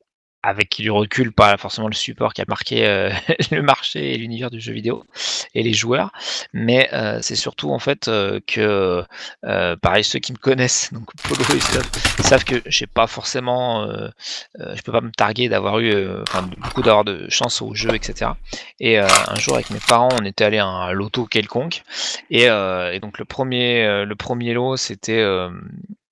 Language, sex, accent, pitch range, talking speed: French, male, French, 105-130 Hz, 205 wpm